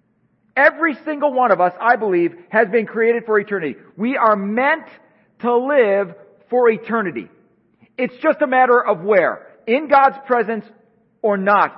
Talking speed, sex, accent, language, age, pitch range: 155 wpm, male, American, English, 40-59, 210-270 Hz